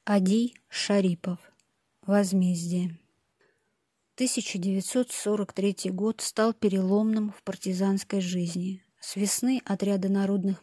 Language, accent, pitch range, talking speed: Russian, native, 190-210 Hz, 80 wpm